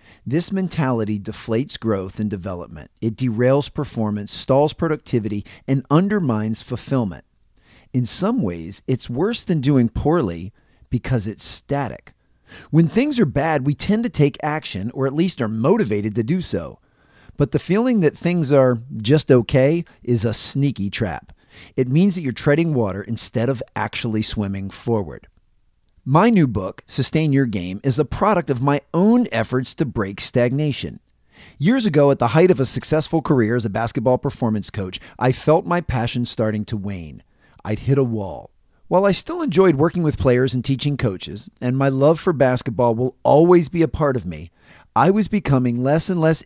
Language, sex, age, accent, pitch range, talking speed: English, male, 40-59, American, 110-155 Hz, 175 wpm